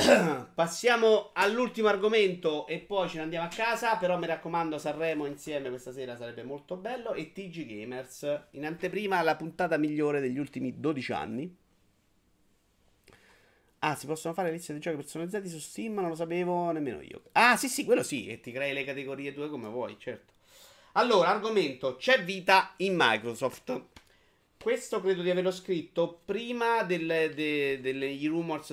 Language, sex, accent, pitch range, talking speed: Italian, male, native, 125-170 Hz, 160 wpm